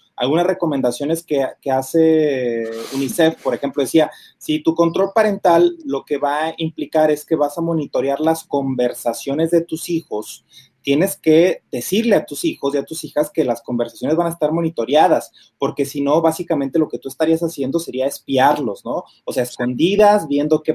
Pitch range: 135-165 Hz